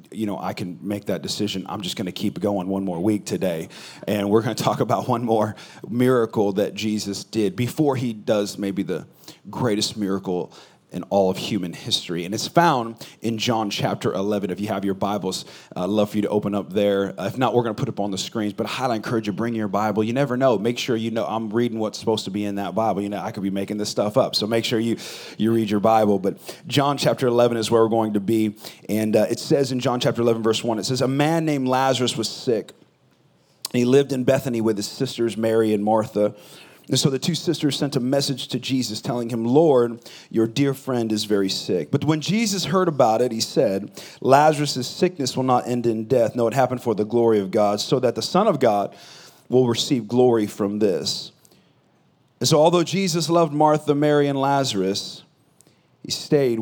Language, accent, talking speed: English, American, 225 wpm